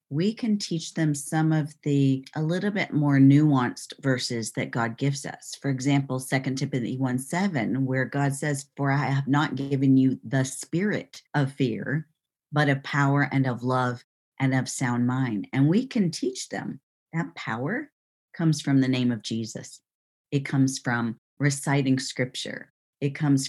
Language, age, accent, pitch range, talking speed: English, 40-59, American, 130-150 Hz, 165 wpm